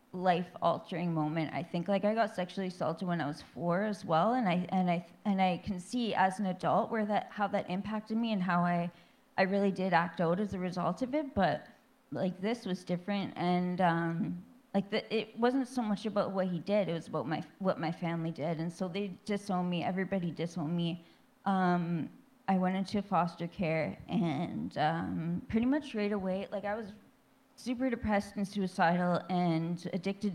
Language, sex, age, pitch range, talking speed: English, female, 20-39, 170-205 Hz, 195 wpm